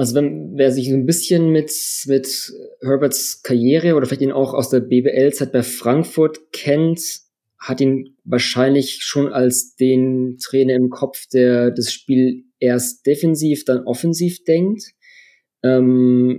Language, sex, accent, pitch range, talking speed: German, male, German, 125-145 Hz, 145 wpm